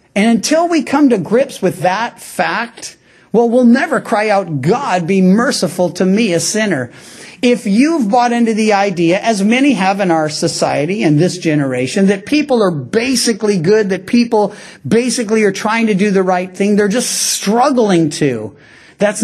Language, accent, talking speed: English, American, 175 wpm